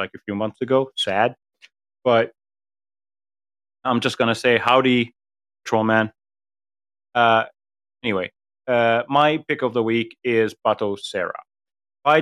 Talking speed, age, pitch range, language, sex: 130 wpm, 30-49, 115-155 Hz, English, male